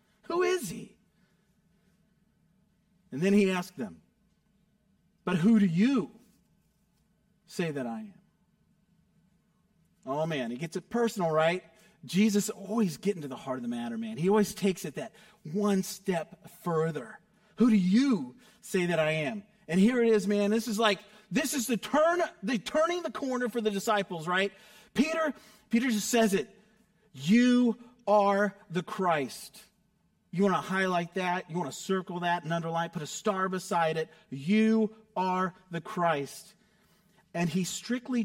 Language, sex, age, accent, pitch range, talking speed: English, male, 40-59, American, 180-215 Hz, 160 wpm